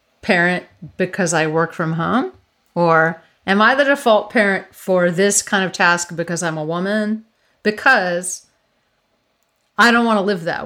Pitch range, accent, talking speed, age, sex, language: 170-225 Hz, American, 160 wpm, 30-49, female, English